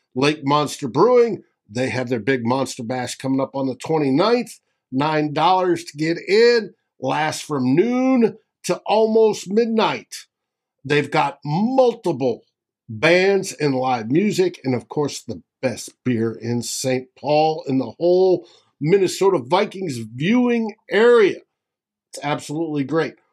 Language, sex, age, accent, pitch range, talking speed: English, male, 50-69, American, 140-195 Hz, 125 wpm